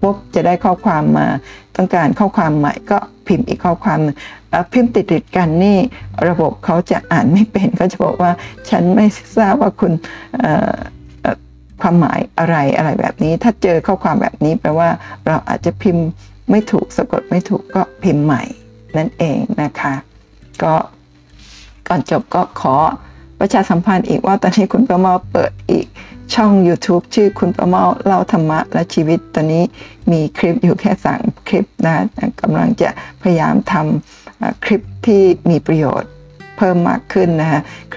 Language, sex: Thai, female